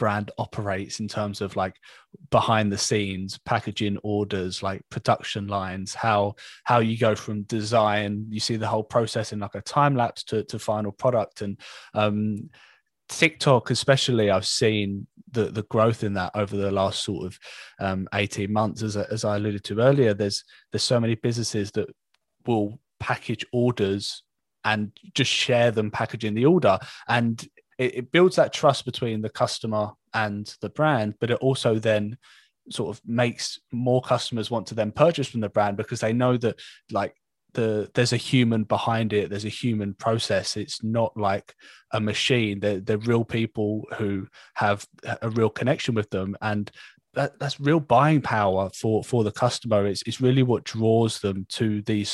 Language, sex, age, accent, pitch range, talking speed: English, male, 20-39, British, 105-120 Hz, 175 wpm